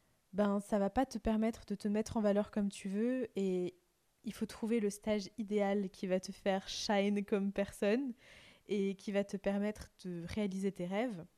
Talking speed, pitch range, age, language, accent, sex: 200 wpm, 195-225 Hz, 20-39, French, French, female